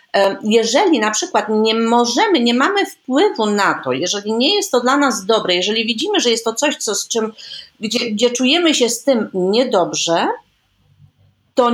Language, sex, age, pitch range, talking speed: Polish, female, 40-59, 195-275 Hz, 160 wpm